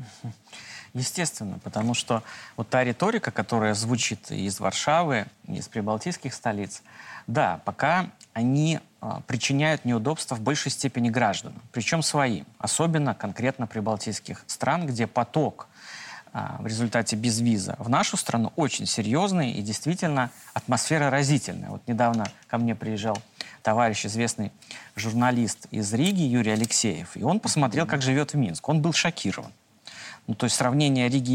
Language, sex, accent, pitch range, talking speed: Russian, male, native, 110-140 Hz, 135 wpm